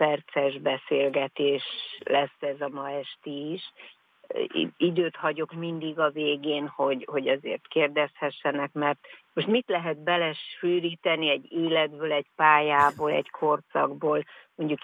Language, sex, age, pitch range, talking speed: Hungarian, female, 50-69, 145-170 Hz, 115 wpm